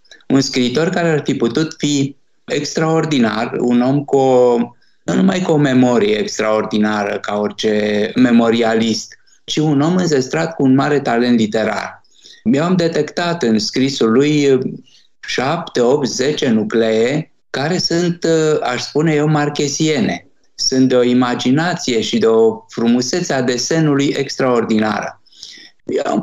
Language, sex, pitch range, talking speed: Romanian, male, 115-160 Hz, 135 wpm